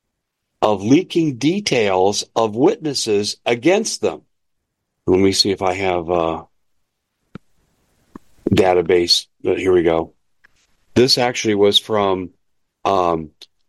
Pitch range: 100-125 Hz